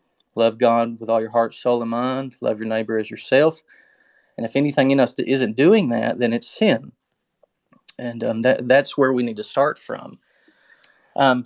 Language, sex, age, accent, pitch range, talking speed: English, male, 30-49, American, 115-135 Hz, 185 wpm